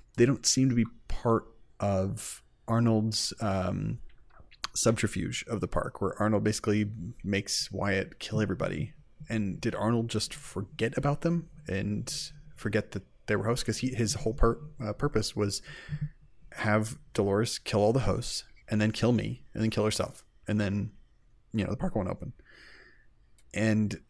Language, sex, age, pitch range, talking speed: English, male, 30-49, 105-120 Hz, 160 wpm